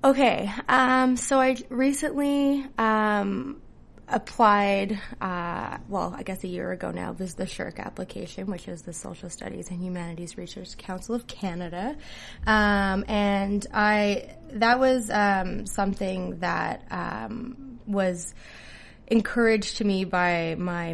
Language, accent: English, American